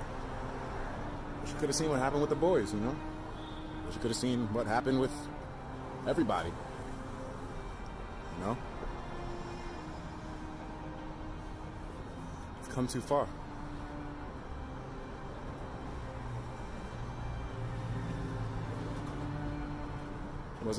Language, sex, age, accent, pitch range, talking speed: English, male, 30-49, American, 95-125 Hz, 80 wpm